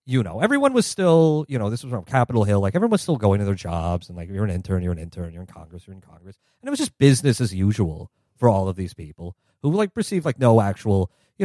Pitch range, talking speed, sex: 90-125 Hz, 280 wpm, male